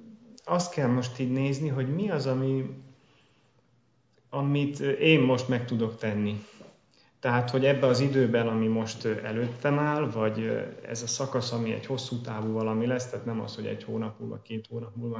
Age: 30-49